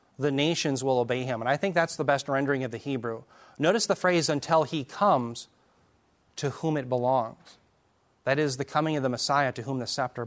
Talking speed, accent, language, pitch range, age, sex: 210 wpm, American, English, 130-175 Hz, 30-49, male